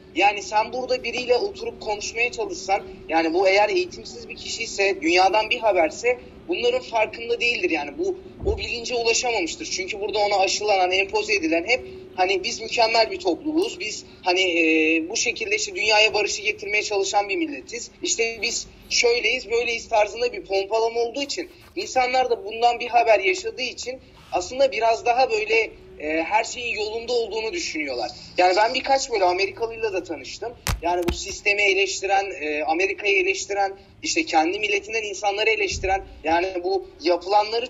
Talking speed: 155 wpm